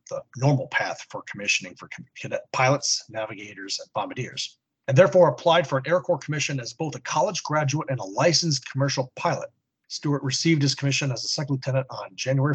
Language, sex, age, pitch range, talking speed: English, male, 40-59, 130-150 Hz, 180 wpm